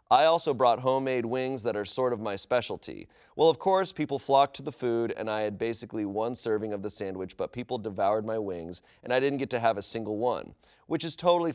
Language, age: English, 30-49